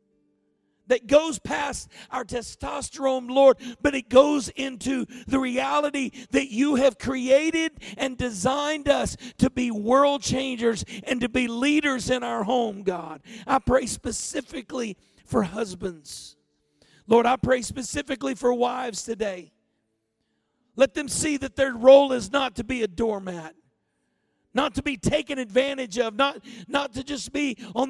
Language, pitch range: English, 210-265 Hz